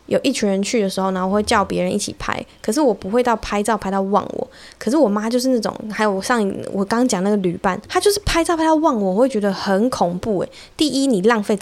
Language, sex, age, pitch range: Chinese, female, 10-29, 195-250 Hz